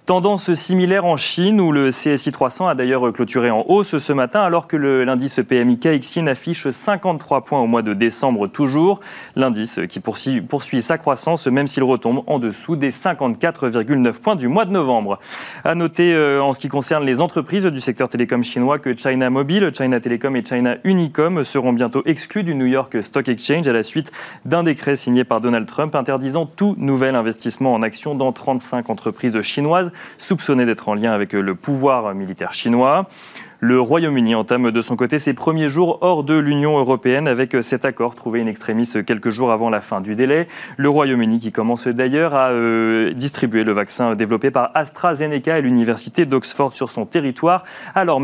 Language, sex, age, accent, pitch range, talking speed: French, male, 30-49, French, 120-155 Hz, 185 wpm